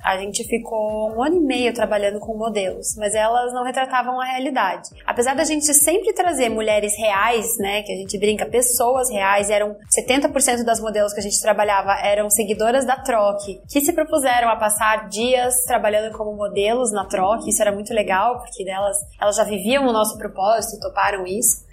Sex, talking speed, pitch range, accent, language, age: female, 185 wpm, 210-260 Hz, Brazilian, Portuguese, 20-39